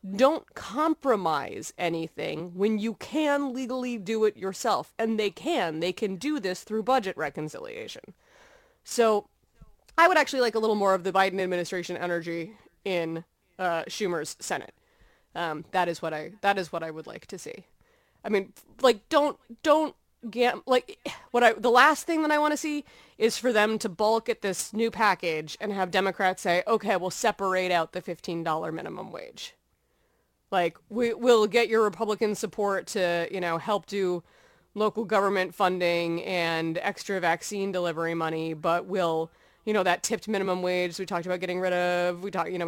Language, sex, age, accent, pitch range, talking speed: English, female, 20-39, American, 175-230 Hz, 175 wpm